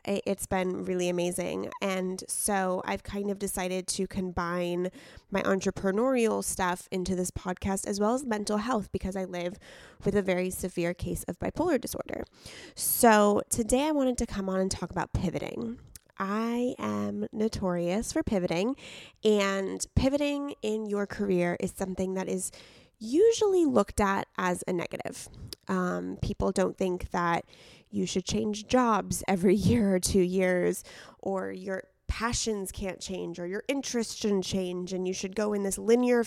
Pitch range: 180-210 Hz